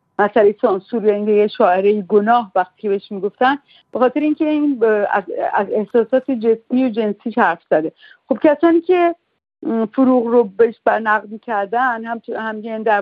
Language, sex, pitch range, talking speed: Persian, female, 205-250 Hz, 130 wpm